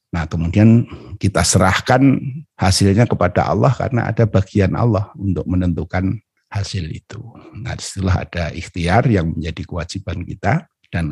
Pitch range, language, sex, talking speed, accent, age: 85-105 Hz, Indonesian, male, 130 wpm, native, 50-69